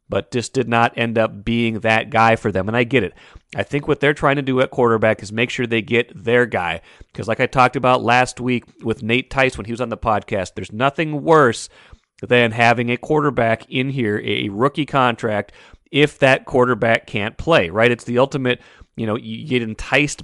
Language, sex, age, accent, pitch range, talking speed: English, male, 30-49, American, 115-135 Hz, 215 wpm